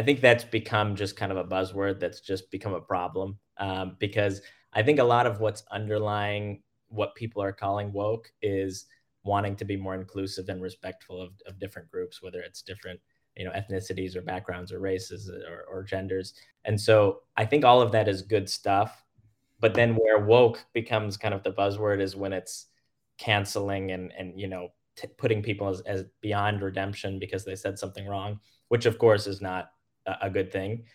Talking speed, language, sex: 195 wpm, English, male